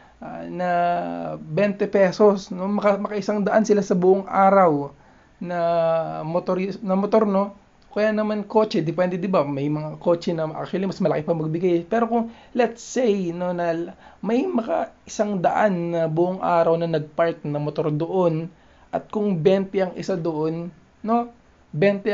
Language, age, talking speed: Filipino, 20-39, 155 wpm